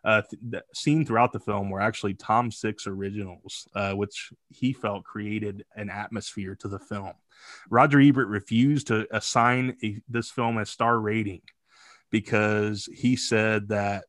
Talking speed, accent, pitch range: 160 wpm, American, 105-120 Hz